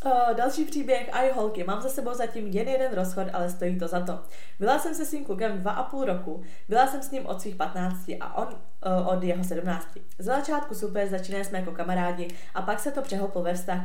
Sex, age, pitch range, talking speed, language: female, 20-39, 175-225 Hz, 215 wpm, Czech